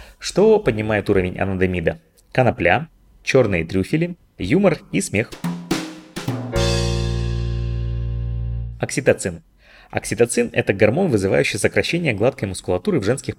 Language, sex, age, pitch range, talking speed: Russian, male, 20-39, 95-125 Hz, 95 wpm